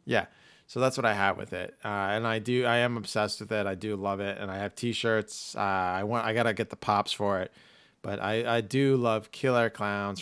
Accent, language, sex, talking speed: American, English, male, 260 wpm